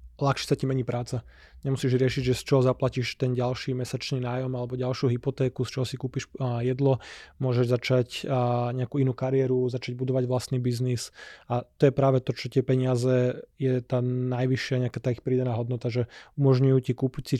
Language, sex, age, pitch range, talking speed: Slovak, male, 20-39, 125-130 Hz, 185 wpm